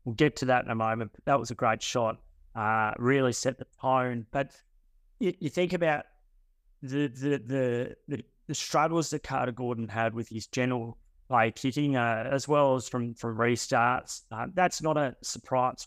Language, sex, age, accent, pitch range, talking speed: English, male, 30-49, Australian, 115-135 Hz, 180 wpm